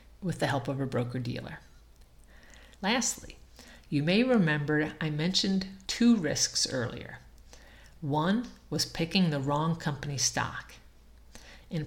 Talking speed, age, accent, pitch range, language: 115 wpm, 50-69, American, 135-185 Hz, English